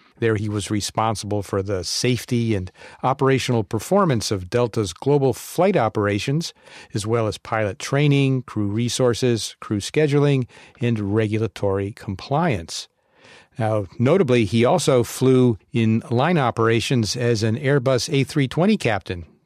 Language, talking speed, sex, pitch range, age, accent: English, 125 wpm, male, 105-135 Hz, 50-69, American